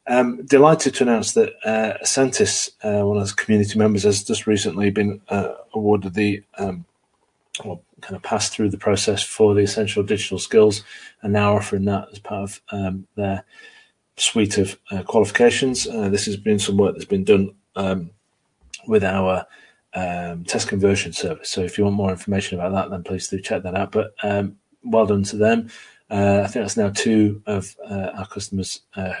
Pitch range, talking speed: 100-115 Hz, 190 wpm